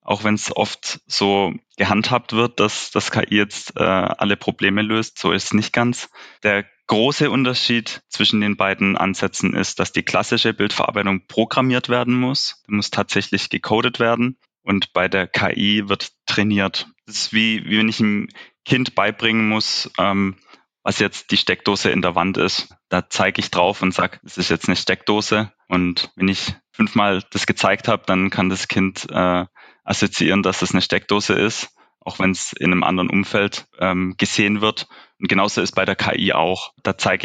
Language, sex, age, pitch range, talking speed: English, male, 20-39, 95-110 Hz, 180 wpm